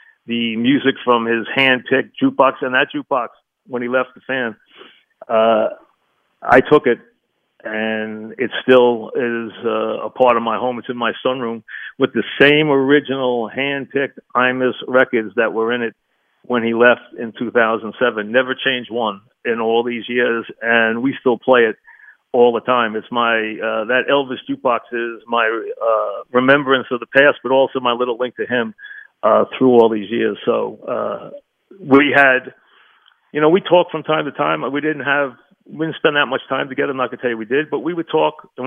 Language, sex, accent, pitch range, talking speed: English, male, American, 115-135 Hz, 190 wpm